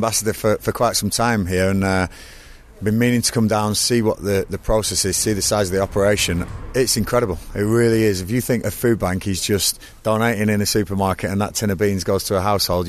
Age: 30-49